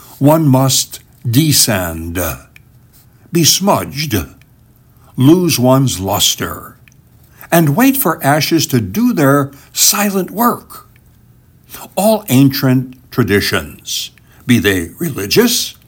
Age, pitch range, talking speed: 60-79, 115-160 Hz, 85 wpm